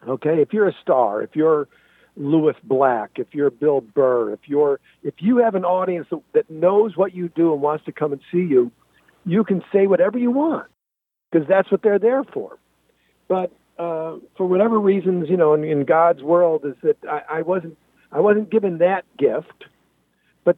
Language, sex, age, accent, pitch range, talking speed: English, male, 50-69, American, 155-225 Hz, 190 wpm